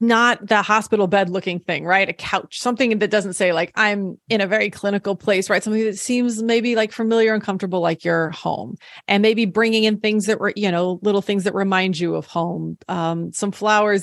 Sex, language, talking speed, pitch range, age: female, English, 220 wpm, 180-220 Hz, 30-49